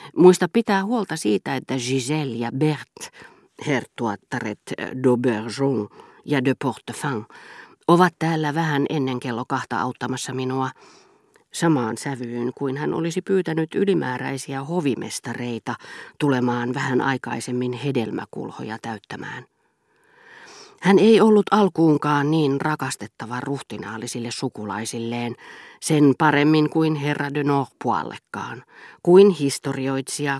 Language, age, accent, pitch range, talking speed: Finnish, 40-59, native, 125-165 Hz, 95 wpm